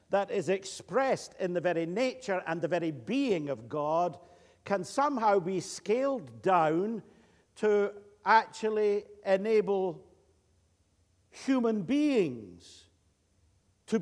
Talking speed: 105 wpm